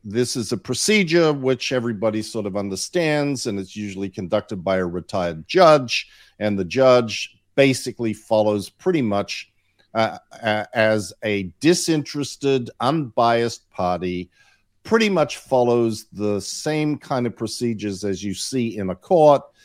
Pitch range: 100-130 Hz